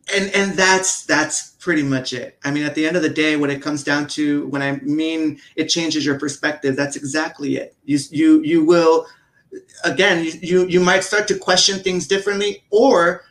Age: 30-49